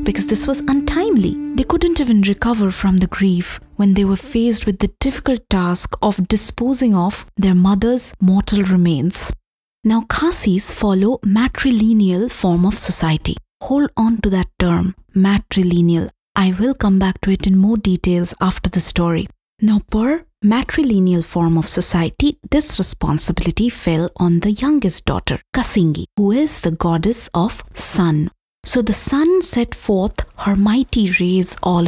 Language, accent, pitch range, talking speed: English, Indian, 180-240 Hz, 150 wpm